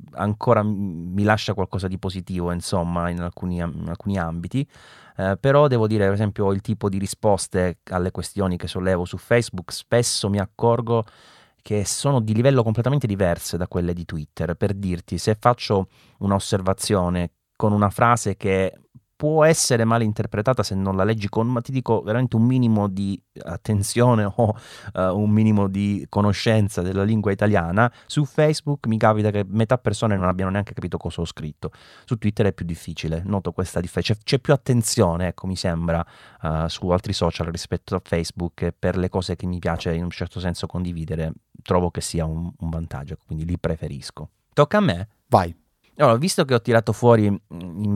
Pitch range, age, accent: 90-110 Hz, 30-49, native